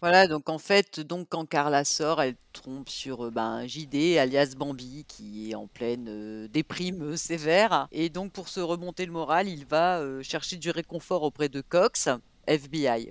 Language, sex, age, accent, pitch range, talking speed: French, female, 40-59, French, 145-180 Hz, 190 wpm